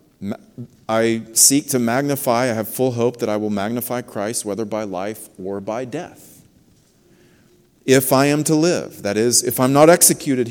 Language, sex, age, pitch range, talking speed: English, male, 40-59, 110-150 Hz, 170 wpm